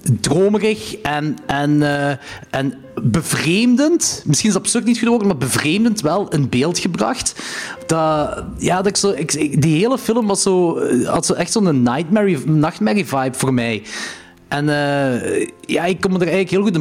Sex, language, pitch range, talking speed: male, Dutch, 130-185 Hz, 170 wpm